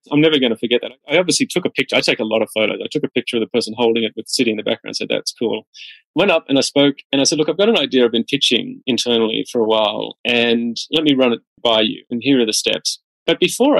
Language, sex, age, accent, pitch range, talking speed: English, male, 30-49, Australian, 120-155 Hz, 300 wpm